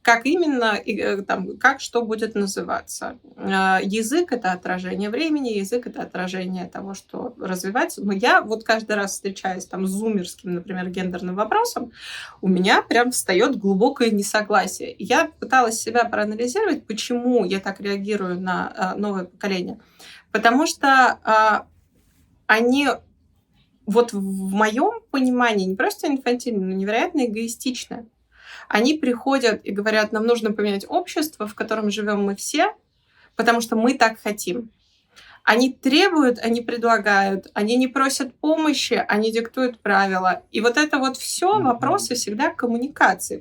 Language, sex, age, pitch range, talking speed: Russian, female, 20-39, 205-260 Hz, 135 wpm